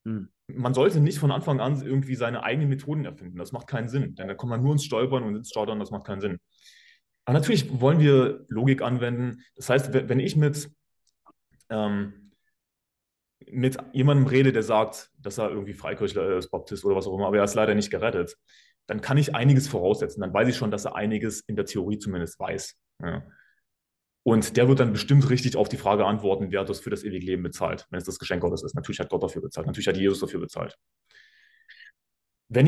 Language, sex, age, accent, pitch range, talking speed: German, male, 20-39, German, 105-135 Hz, 210 wpm